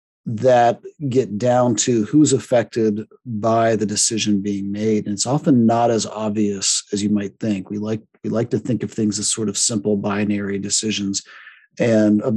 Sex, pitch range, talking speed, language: male, 105-125 Hz, 180 wpm, English